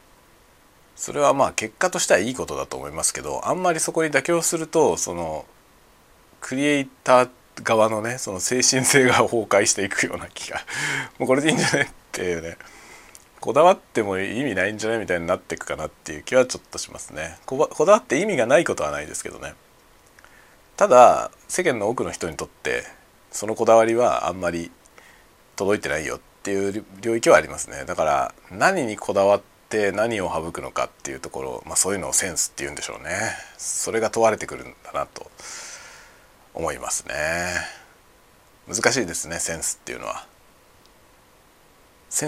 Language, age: Japanese, 40-59